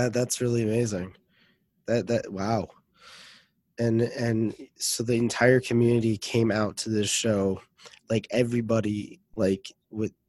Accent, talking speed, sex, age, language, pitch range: American, 120 wpm, male, 20-39, English, 105-120 Hz